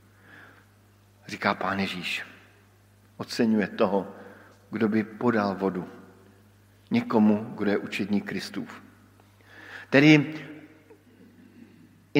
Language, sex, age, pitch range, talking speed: Slovak, male, 50-69, 105-140 Hz, 80 wpm